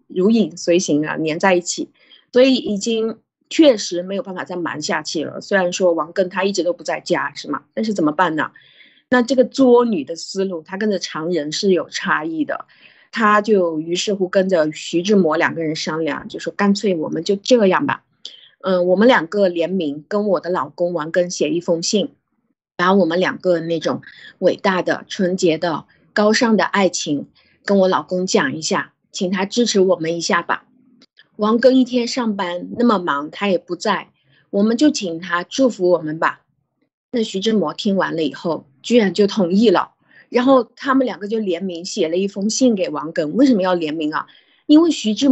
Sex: female